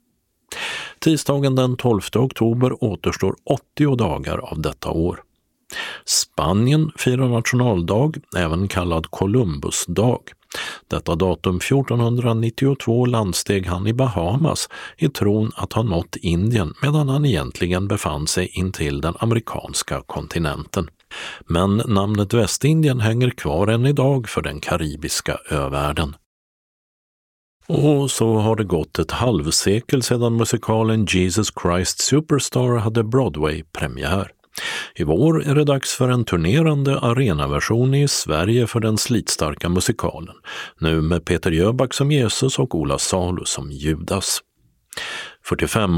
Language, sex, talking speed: Swedish, male, 120 wpm